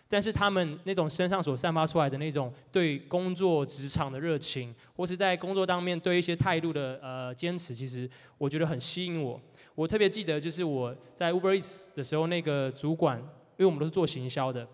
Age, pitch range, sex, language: 20-39, 135-180 Hz, male, Chinese